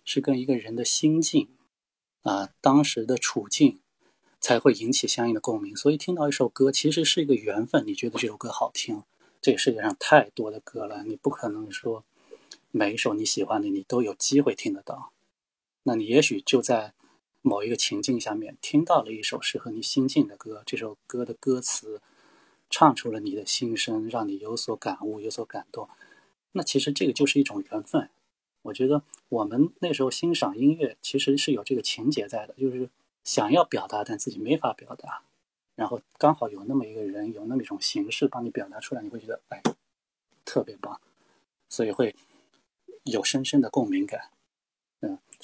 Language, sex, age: Chinese, male, 20-39